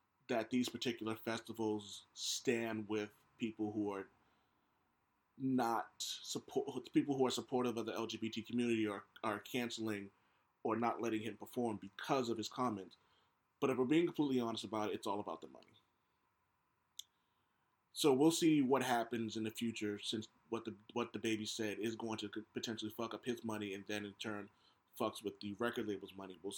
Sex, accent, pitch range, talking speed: male, American, 105-125 Hz, 175 wpm